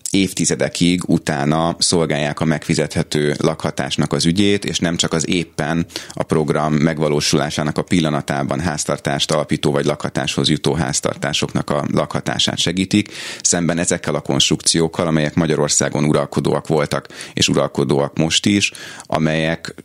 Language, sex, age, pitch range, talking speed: Hungarian, male, 30-49, 75-85 Hz, 120 wpm